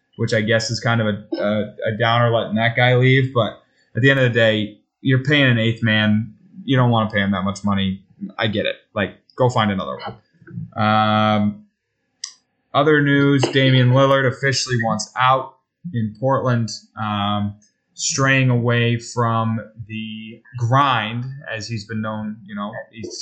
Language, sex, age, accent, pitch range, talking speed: English, male, 20-39, American, 110-135 Hz, 170 wpm